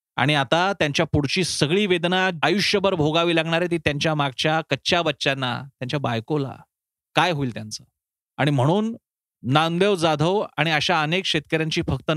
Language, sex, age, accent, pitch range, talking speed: Marathi, male, 30-49, native, 135-180 Hz, 75 wpm